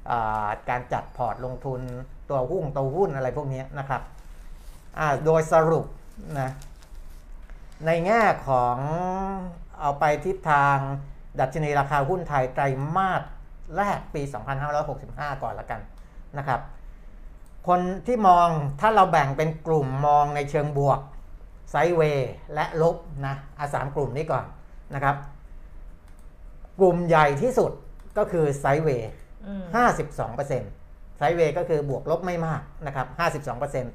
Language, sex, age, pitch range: Thai, male, 60-79, 125-160 Hz